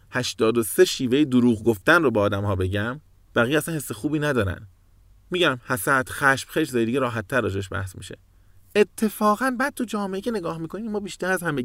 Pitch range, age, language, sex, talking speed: 95-145 Hz, 30-49, Persian, male, 180 wpm